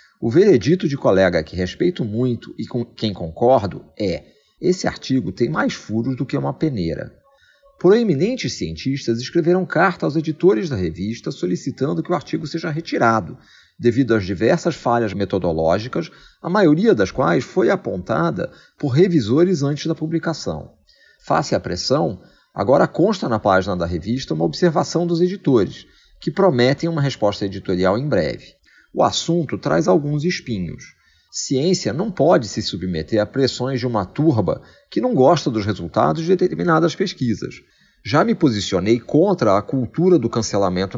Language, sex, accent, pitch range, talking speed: Portuguese, male, Brazilian, 105-165 Hz, 150 wpm